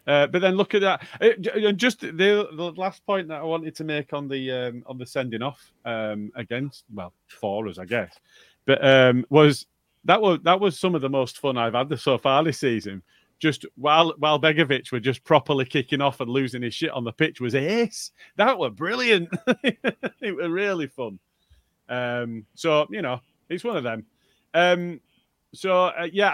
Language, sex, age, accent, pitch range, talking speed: English, male, 30-49, British, 115-155 Hz, 200 wpm